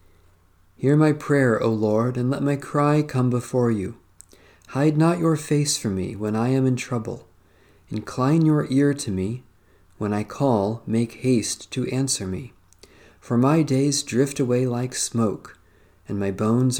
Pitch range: 100-130 Hz